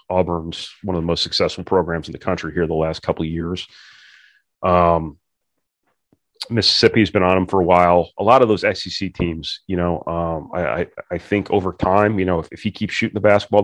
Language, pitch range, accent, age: English, 80-90 Hz, American, 30-49